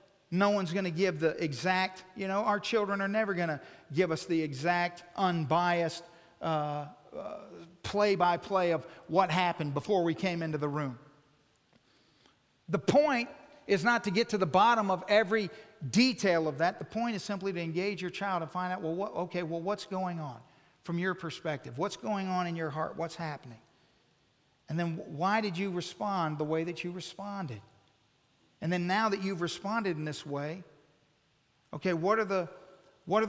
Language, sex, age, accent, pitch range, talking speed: English, male, 50-69, American, 160-210 Hz, 175 wpm